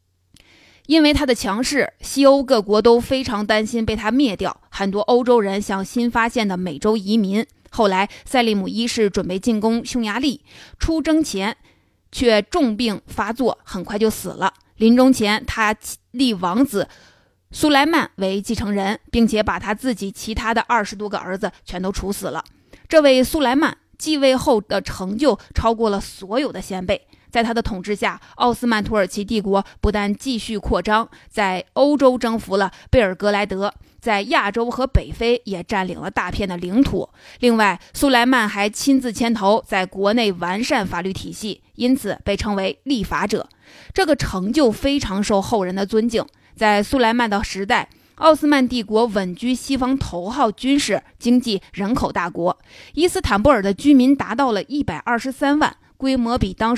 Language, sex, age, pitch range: Chinese, female, 20-39, 200-250 Hz